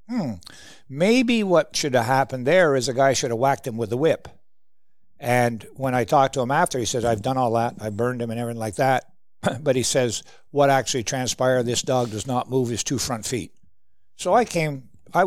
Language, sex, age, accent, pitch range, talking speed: English, male, 60-79, American, 120-145 Hz, 220 wpm